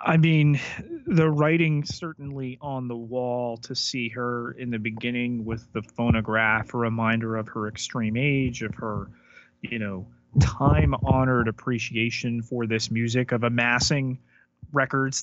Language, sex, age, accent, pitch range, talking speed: English, male, 30-49, American, 110-130 Hz, 140 wpm